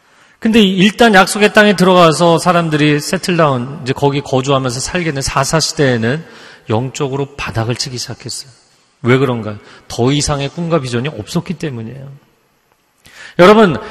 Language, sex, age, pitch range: Korean, male, 40-59, 130-210 Hz